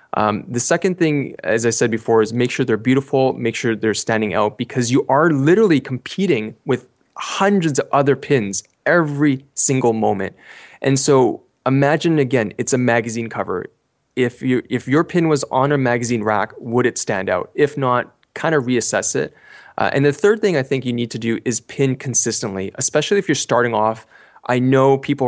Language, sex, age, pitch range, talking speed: English, male, 20-39, 115-140 Hz, 190 wpm